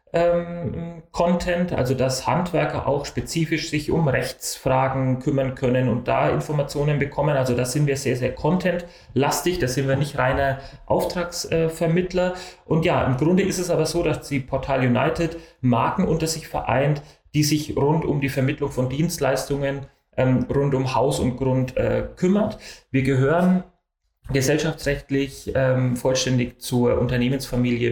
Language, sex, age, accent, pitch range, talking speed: German, male, 30-49, German, 130-165 Hz, 145 wpm